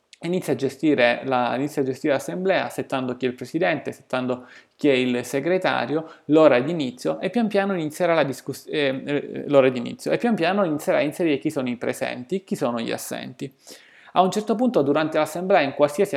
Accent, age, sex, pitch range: native, 20-39, male, 135-180 Hz